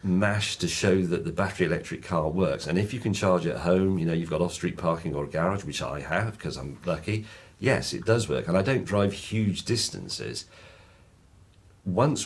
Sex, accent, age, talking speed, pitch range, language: male, British, 50-69, 205 wpm, 85-105 Hz, English